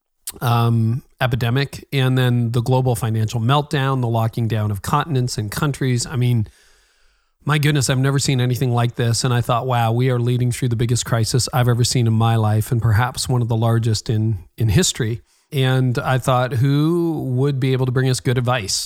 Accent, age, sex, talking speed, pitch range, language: American, 40-59, male, 200 wpm, 120-135 Hz, English